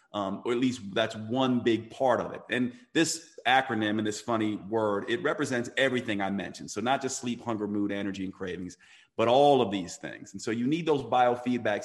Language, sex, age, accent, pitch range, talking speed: English, male, 40-59, American, 100-125 Hz, 215 wpm